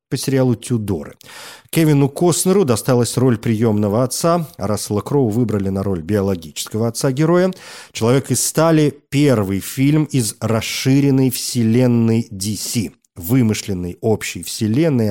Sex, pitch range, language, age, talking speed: male, 110-135 Hz, Russian, 40-59, 120 wpm